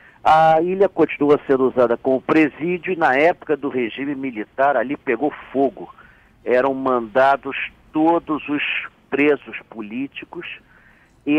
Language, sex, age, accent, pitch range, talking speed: Portuguese, male, 50-69, Brazilian, 130-175 Hz, 120 wpm